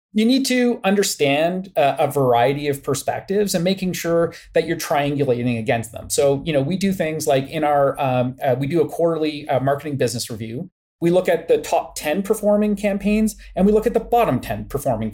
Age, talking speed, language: 30-49, 205 wpm, English